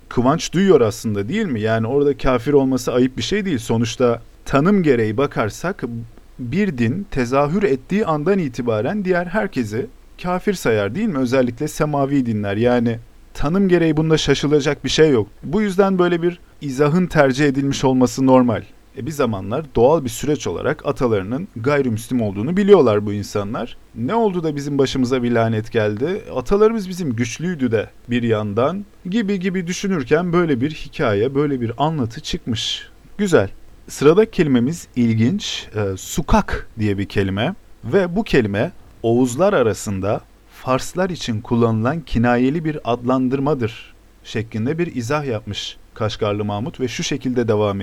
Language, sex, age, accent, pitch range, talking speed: Turkish, male, 40-59, native, 115-155 Hz, 145 wpm